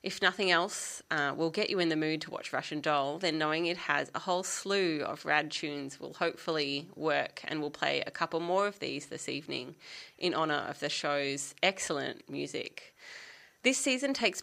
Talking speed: 195 wpm